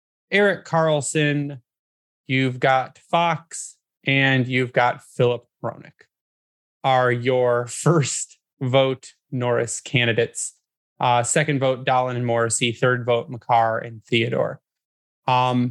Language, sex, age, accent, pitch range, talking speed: English, male, 20-39, American, 125-165 Hz, 105 wpm